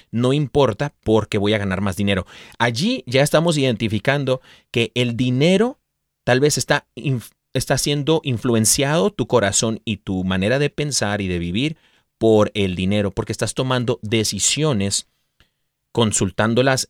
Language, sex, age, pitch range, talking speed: Spanish, male, 30-49, 100-130 Hz, 140 wpm